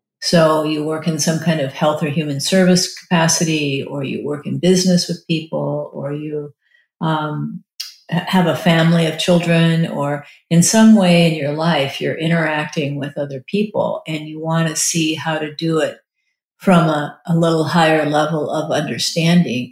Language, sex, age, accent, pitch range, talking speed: English, female, 50-69, American, 150-175 Hz, 170 wpm